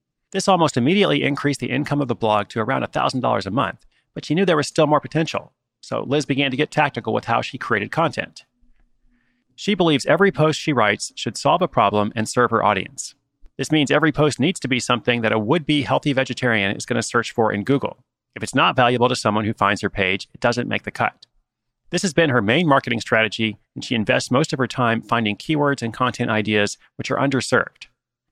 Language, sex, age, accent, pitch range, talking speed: English, male, 30-49, American, 110-140 Hz, 220 wpm